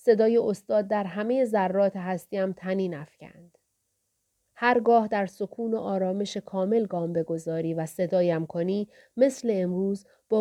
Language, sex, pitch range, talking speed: Persian, female, 175-225 Hz, 135 wpm